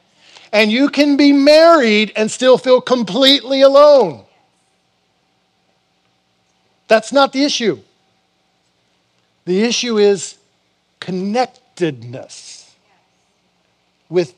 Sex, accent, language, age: male, American, English, 50-69